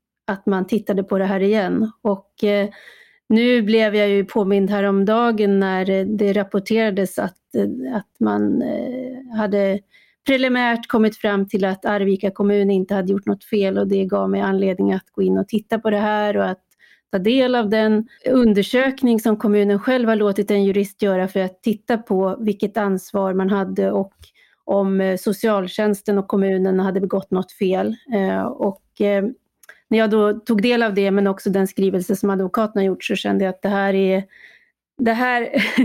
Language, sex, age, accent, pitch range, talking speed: Swedish, female, 30-49, native, 195-220 Hz, 170 wpm